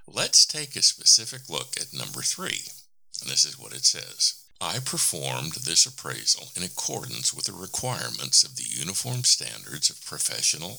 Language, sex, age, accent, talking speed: English, male, 60-79, American, 160 wpm